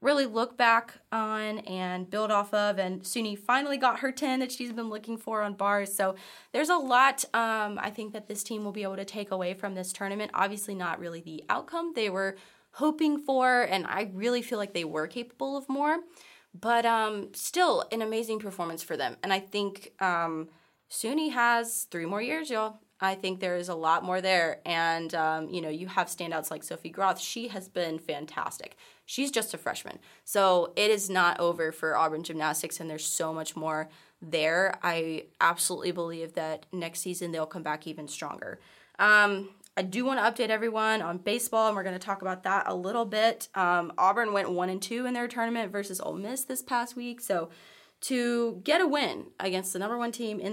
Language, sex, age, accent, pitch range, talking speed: English, female, 20-39, American, 175-235 Hz, 205 wpm